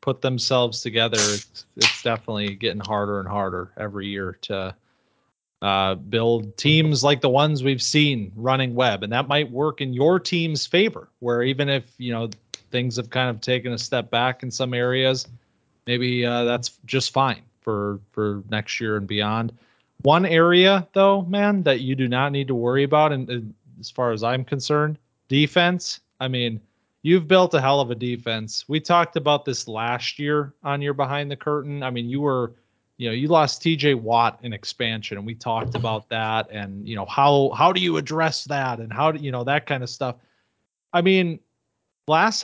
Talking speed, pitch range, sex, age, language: 190 wpm, 115-145 Hz, male, 30-49, English